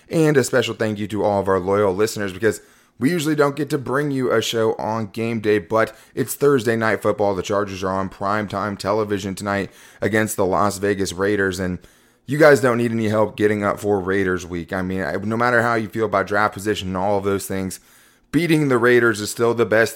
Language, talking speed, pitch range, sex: English, 225 wpm, 100-120 Hz, male